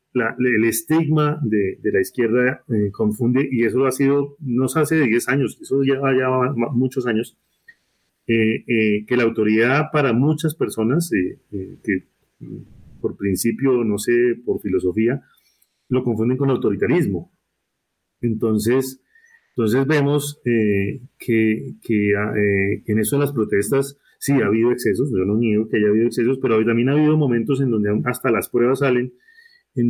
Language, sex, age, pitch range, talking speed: Spanish, male, 30-49, 110-140 Hz, 160 wpm